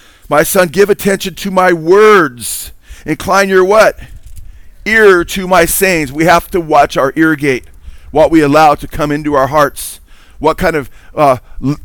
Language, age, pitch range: English, 40-59, 135-175 Hz